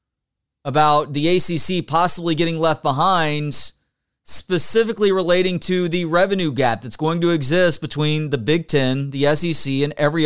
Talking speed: 145 wpm